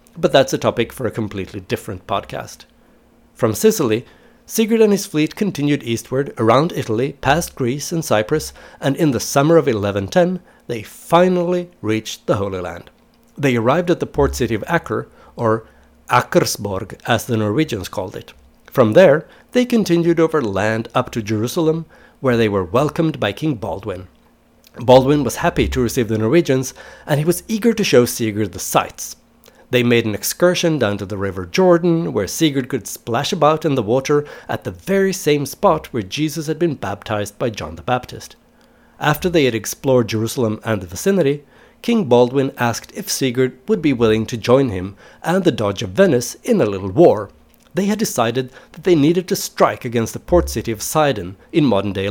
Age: 60-79